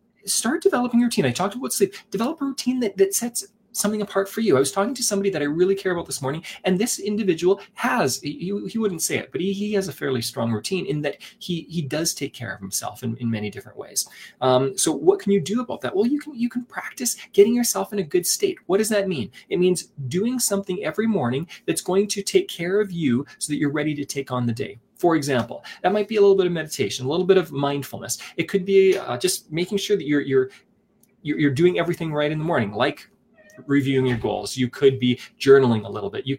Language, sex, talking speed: English, male, 250 wpm